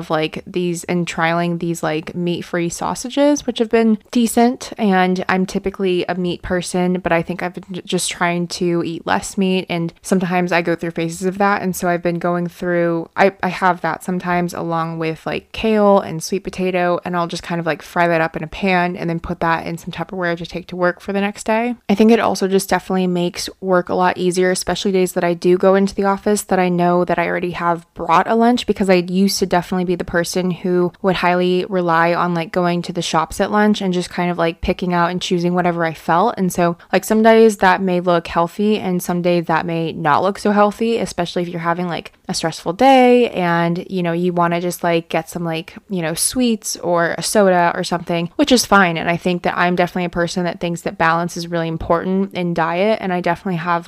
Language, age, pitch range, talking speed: English, 20-39, 170-190 Hz, 235 wpm